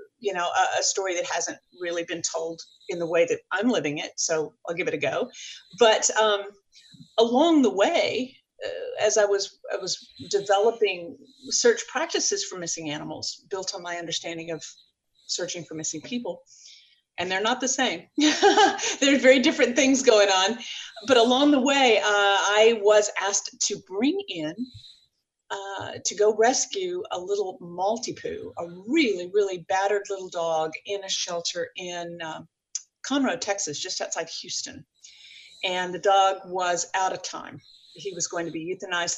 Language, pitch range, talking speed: English, 175-255 Hz, 165 wpm